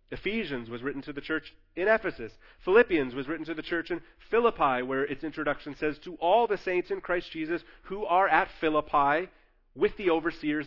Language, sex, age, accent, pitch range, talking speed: English, male, 30-49, American, 145-180 Hz, 190 wpm